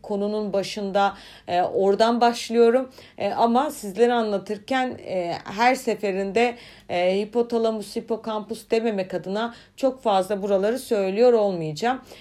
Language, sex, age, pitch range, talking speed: Turkish, female, 40-59, 185-225 Hz, 110 wpm